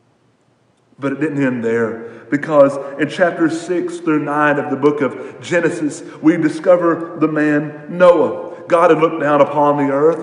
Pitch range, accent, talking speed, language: 145-165 Hz, American, 165 wpm, English